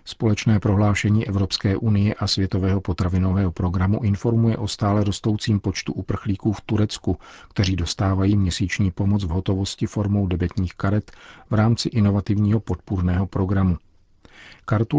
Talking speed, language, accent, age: 125 wpm, Czech, native, 50-69